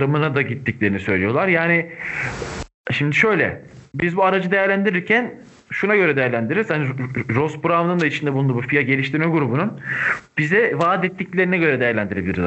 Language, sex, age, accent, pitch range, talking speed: Turkish, male, 40-59, native, 125-165 Hz, 135 wpm